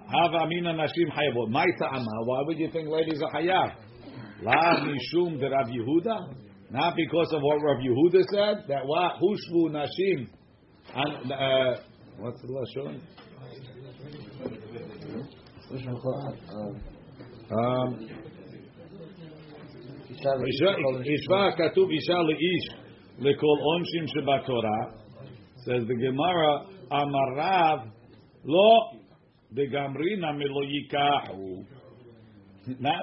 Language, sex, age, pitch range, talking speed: English, male, 60-79, 130-160 Hz, 70 wpm